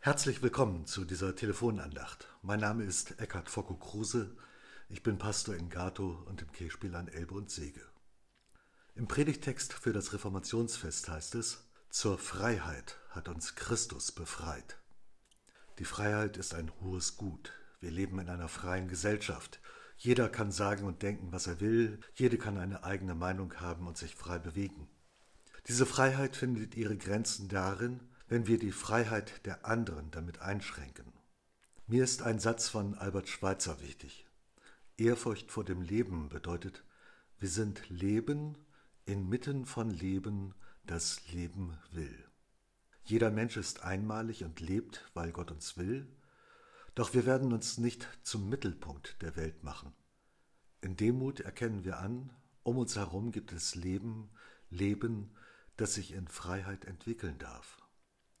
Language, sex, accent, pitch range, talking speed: German, male, German, 90-115 Hz, 145 wpm